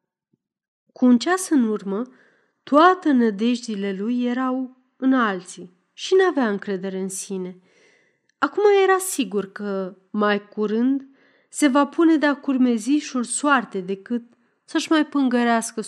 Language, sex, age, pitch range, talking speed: Romanian, female, 30-49, 195-265 Hz, 125 wpm